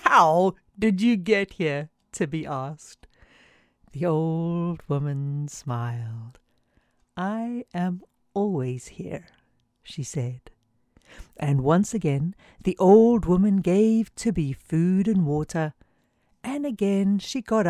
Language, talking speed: English, 110 wpm